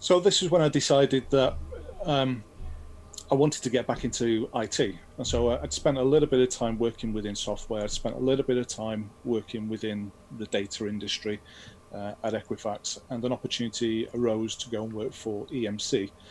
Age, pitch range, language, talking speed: 30-49, 105-120 Hz, English, 190 wpm